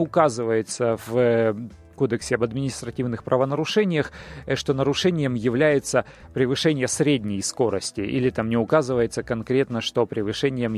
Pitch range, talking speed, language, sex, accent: 120-155 Hz, 105 wpm, Russian, male, native